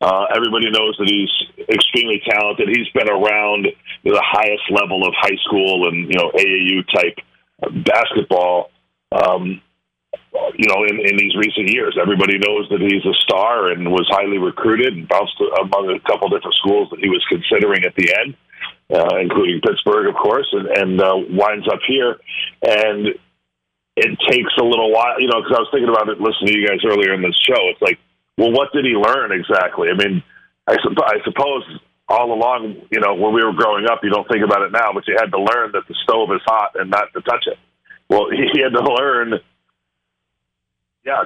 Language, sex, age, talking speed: English, male, 40-59, 200 wpm